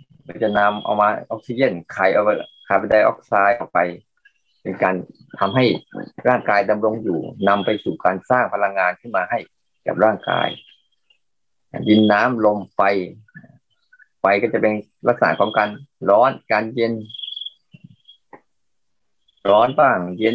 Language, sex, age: Thai, male, 20-39